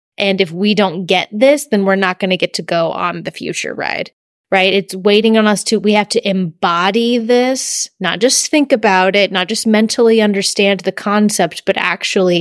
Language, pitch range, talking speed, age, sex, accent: English, 185-220 Hz, 205 wpm, 20-39, female, American